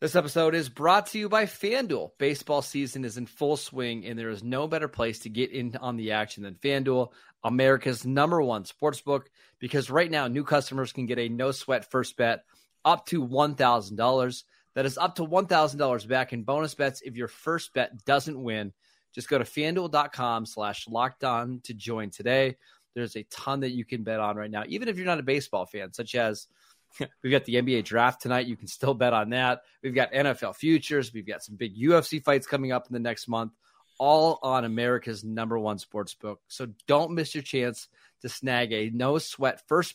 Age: 30-49